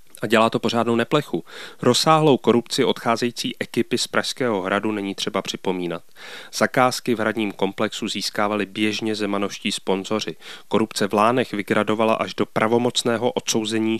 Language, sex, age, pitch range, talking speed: Czech, male, 30-49, 100-120 Hz, 135 wpm